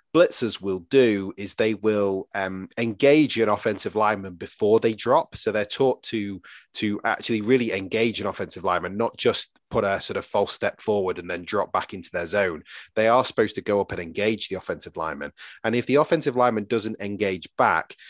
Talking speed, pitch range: 200 wpm, 95-115 Hz